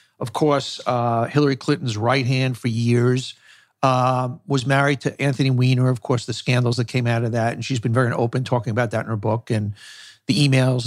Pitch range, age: 125-160 Hz, 50-69